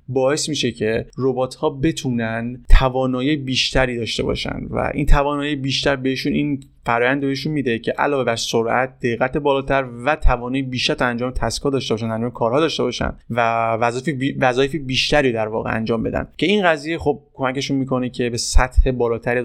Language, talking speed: Persian, 165 wpm